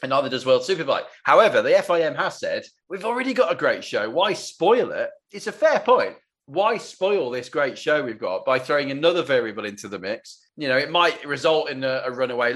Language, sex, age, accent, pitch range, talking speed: English, male, 30-49, British, 130-195 Hz, 220 wpm